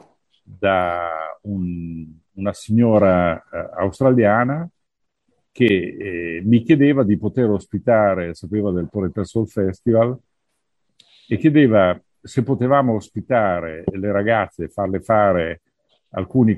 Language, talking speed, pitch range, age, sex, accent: Italian, 100 wpm, 90-120 Hz, 50-69, male, native